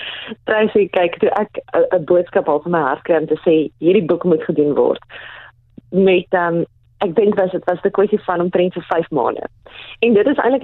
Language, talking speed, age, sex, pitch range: English, 200 wpm, 20-39, female, 165-215 Hz